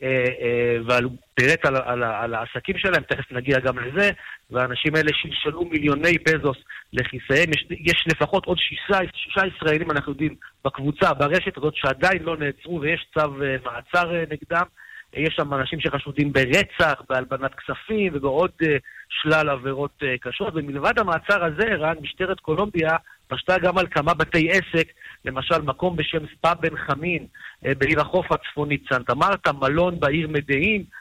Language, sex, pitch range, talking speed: Hebrew, male, 135-170 Hz, 135 wpm